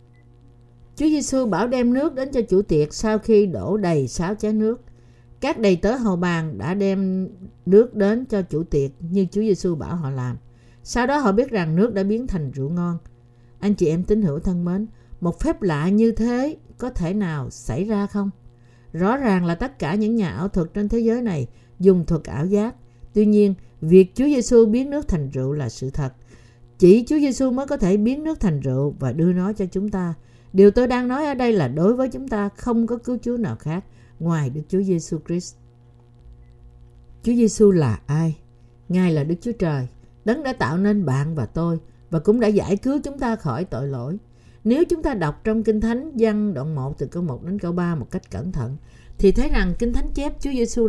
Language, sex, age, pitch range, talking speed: Vietnamese, female, 60-79, 140-220 Hz, 215 wpm